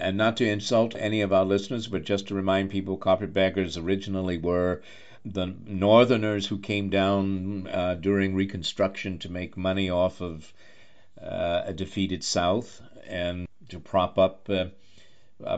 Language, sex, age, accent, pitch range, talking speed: English, male, 50-69, American, 90-105 Hz, 145 wpm